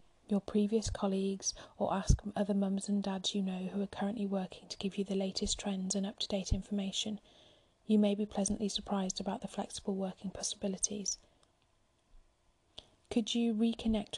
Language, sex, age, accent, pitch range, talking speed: English, female, 30-49, British, 195-210 Hz, 155 wpm